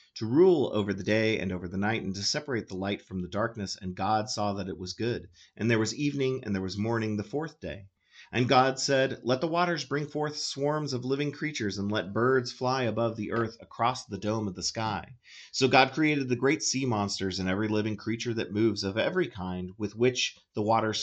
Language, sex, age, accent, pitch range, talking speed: English, male, 40-59, American, 100-130 Hz, 230 wpm